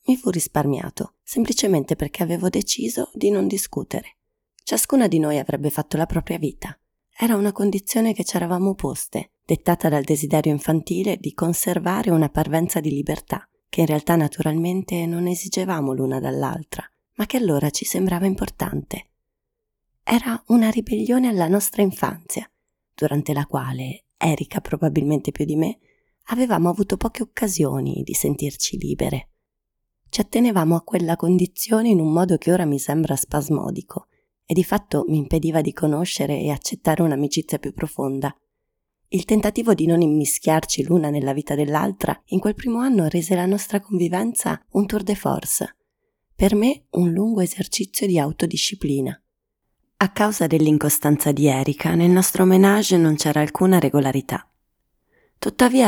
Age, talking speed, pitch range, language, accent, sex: 30-49, 145 wpm, 150-200 Hz, Italian, native, female